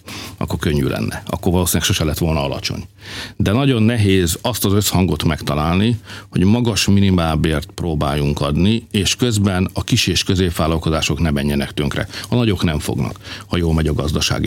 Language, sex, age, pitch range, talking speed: Hungarian, male, 60-79, 85-110 Hz, 160 wpm